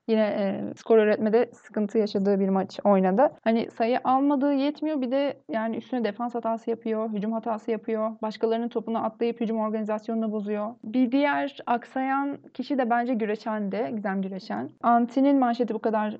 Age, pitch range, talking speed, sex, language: 30-49, 210-255 Hz, 160 wpm, female, Turkish